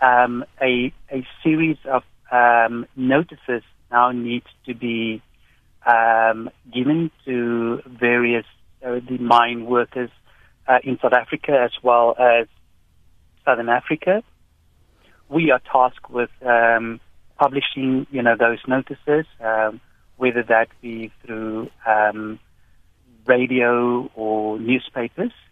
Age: 30-49